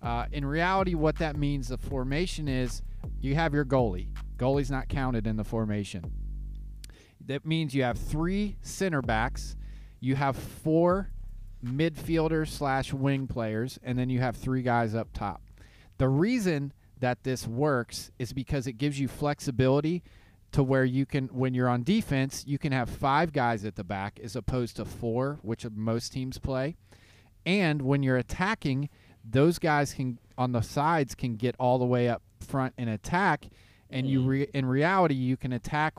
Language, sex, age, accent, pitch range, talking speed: English, male, 30-49, American, 115-145 Hz, 170 wpm